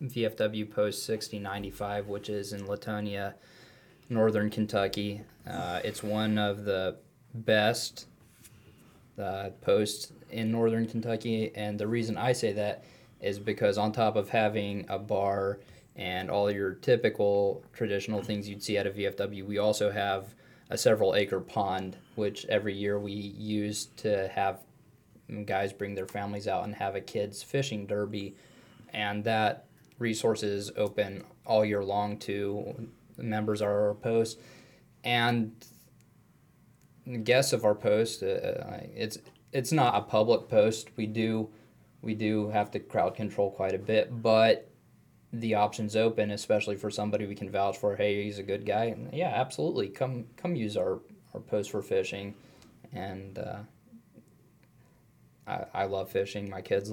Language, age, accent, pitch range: English, 20-39, American, 100-115 Hz